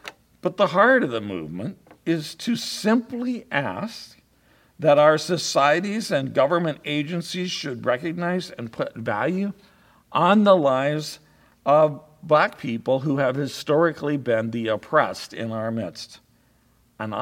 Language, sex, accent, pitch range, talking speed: English, male, American, 110-155 Hz, 130 wpm